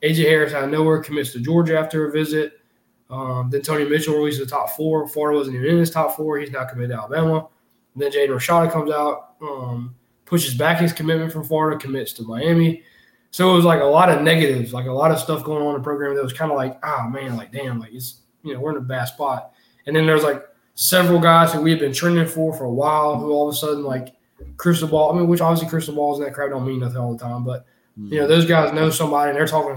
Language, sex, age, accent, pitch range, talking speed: English, male, 20-39, American, 130-160 Hz, 265 wpm